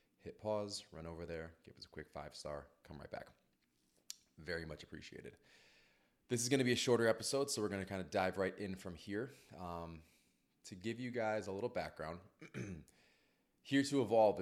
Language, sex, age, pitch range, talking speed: English, male, 20-39, 80-95 Hz, 190 wpm